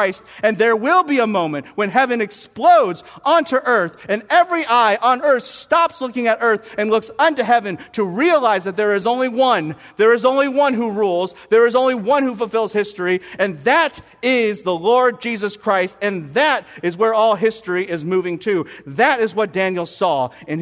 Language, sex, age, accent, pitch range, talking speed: English, male, 50-69, American, 155-240 Hz, 190 wpm